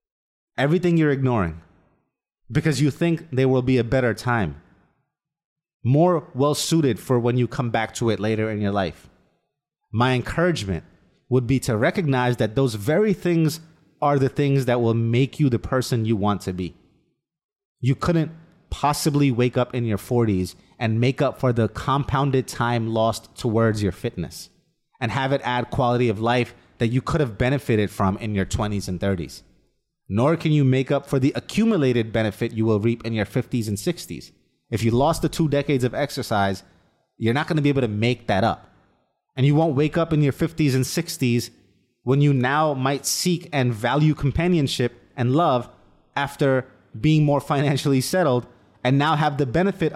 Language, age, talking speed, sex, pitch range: English, 30-49, 180 wpm, male, 115-145 Hz